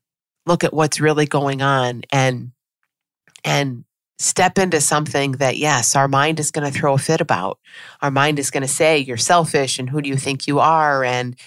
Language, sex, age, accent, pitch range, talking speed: English, female, 30-49, American, 130-155 Hz, 200 wpm